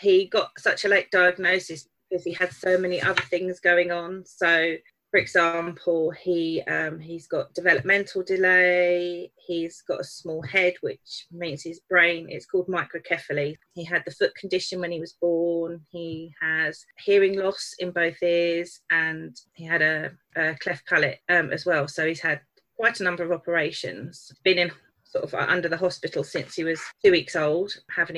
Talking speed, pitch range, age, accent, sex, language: 180 wpm, 160-180 Hz, 30-49, British, female, English